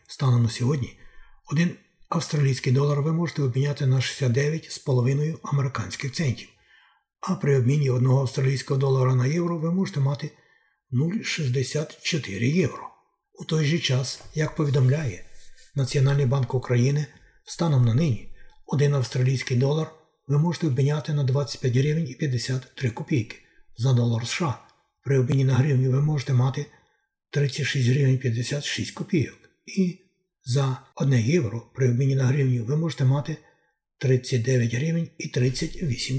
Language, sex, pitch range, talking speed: Ukrainian, male, 130-155 Hz, 125 wpm